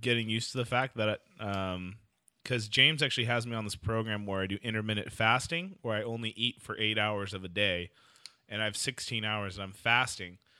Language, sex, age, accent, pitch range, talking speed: English, male, 20-39, American, 100-125 Hz, 215 wpm